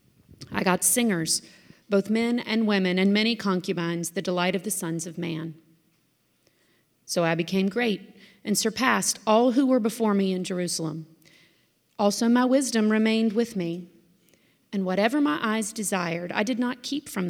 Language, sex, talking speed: English, female, 160 wpm